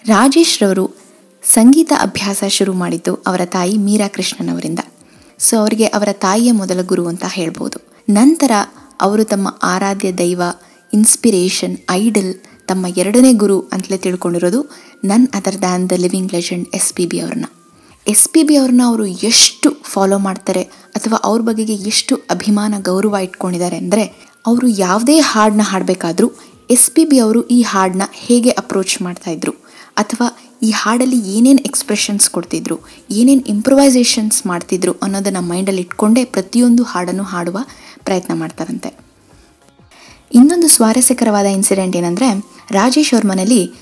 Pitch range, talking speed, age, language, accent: 190-245 Hz, 125 wpm, 20-39, Kannada, native